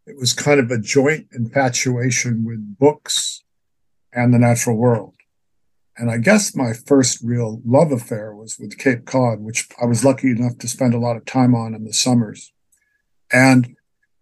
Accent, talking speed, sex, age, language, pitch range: American, 175 wpm, male, 50-69, English, 115-135 Hz